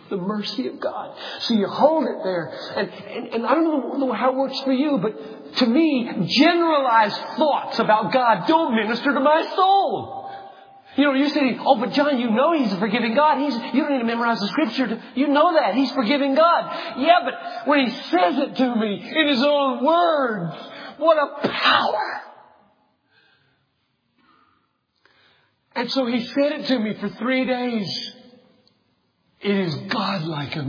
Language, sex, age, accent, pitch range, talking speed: English, male, 50-69, American, 175-270 Hz, 170 wpm